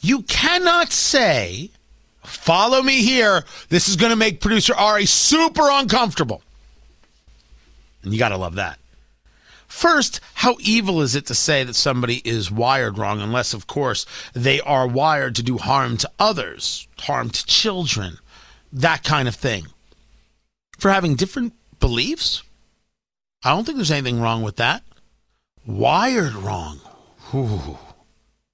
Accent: American